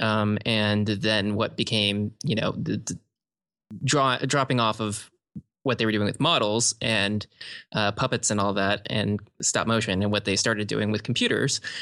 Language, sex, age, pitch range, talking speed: English, male, 20-39, 105-130 Hz, 180 wpm